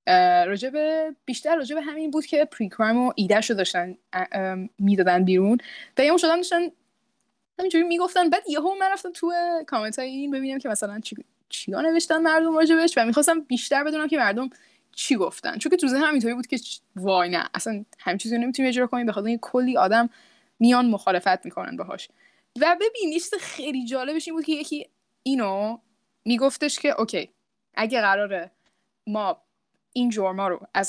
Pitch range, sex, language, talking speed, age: 220-315 Hz, female, Persian, 160 wpm, 10-29